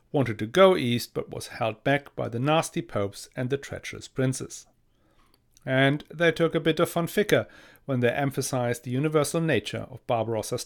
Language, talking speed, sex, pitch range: English, 180 wpm, male, 110-150 Hz